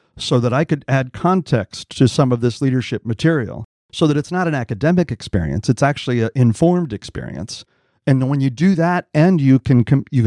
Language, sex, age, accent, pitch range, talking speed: English, male, 40-59, American, 110-150 Hz, 195 wpm